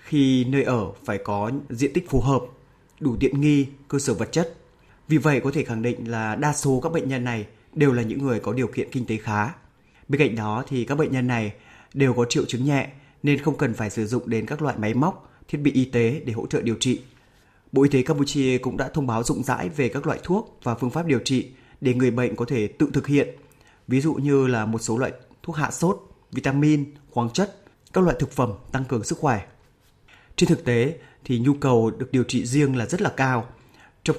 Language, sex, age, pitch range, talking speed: Vietnamese, male, 20-39, 120-145 Hz, 235 wpm